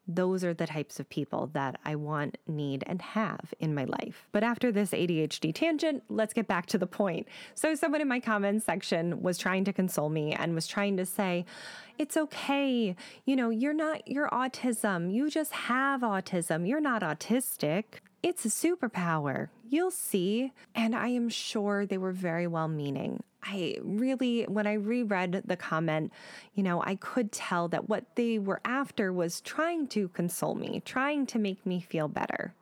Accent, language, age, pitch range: American, English, 20-39, 175-235 Hz